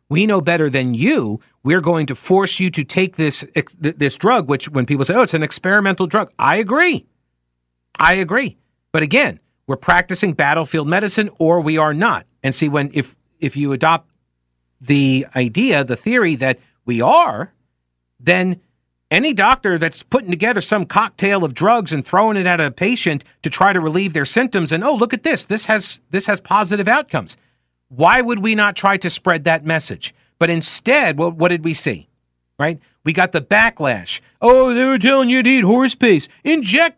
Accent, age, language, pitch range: American, 50-69, English, 130-205 Hz